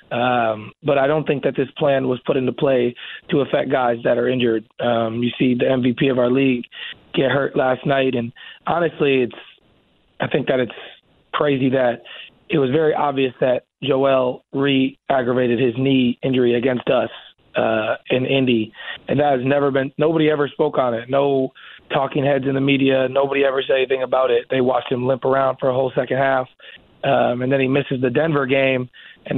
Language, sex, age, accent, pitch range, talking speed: English, male, 30-49, American, 125-145 Hz, 195 wpm